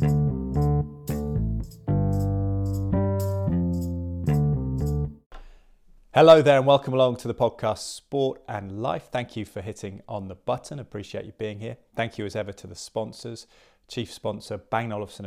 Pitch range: 95-115 Hz